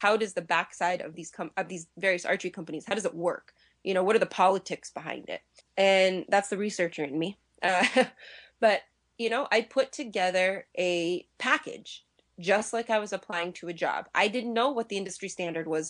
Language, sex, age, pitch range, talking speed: English, female, 20-39, 175-220 Hz, 210 wpm